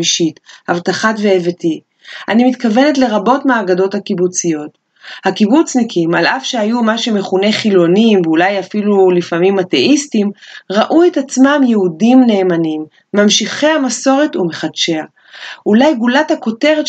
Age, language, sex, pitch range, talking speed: 30-49, Hebrew, female, 190-265 Hz, 105 wpm